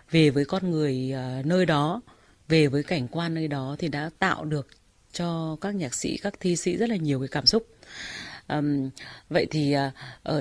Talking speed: 190 wpm